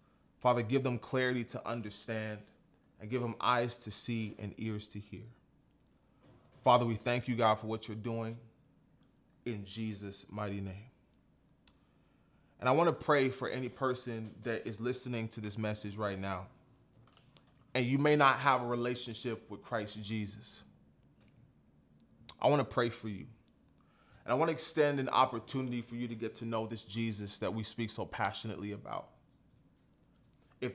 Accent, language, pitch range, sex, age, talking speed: American, English, 110-130 Hz, male, 20-39, 160 wpm